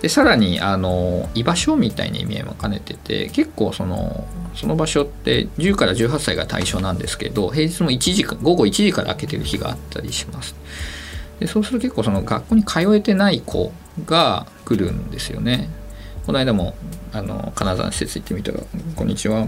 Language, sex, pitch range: Japanese, male, 90-140 Hz